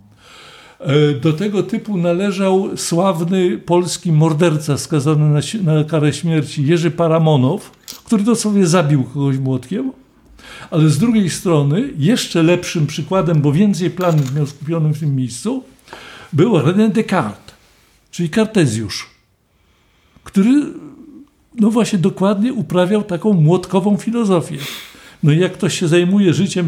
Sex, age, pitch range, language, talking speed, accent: male, 60-79, 120-175 Hz, Polish, 120 wpm, native